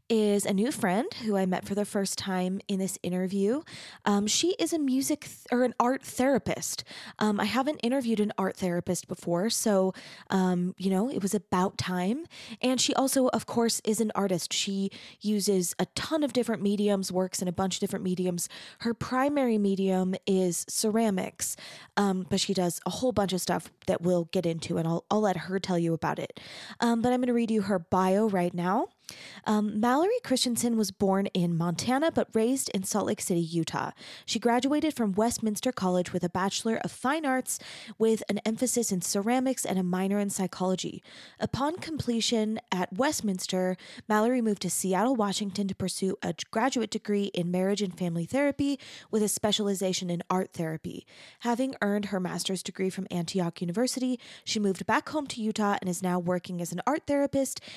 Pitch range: 185-235 Hz